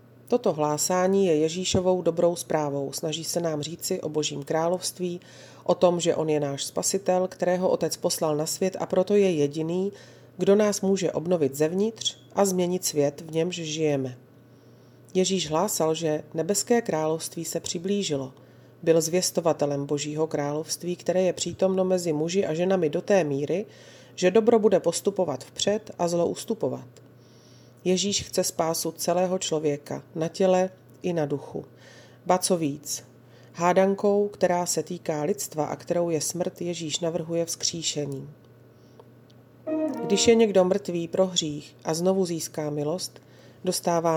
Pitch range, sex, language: 145-185 Hz, female, Slovak